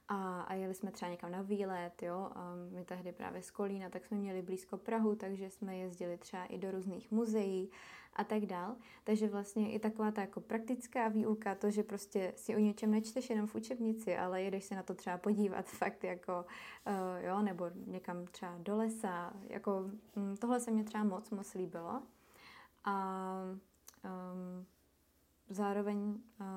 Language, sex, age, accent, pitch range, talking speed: Czech, female, 20-39, native, 190-220 Hz, 170 wpm